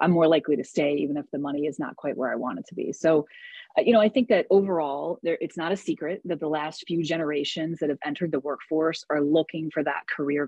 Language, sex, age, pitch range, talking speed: English, female, 30-49, 150-190 Hz, 260 wpm